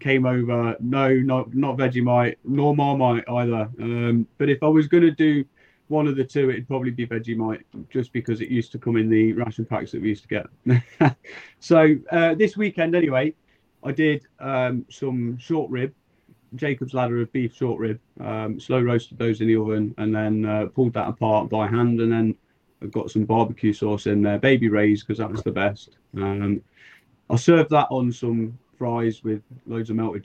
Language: English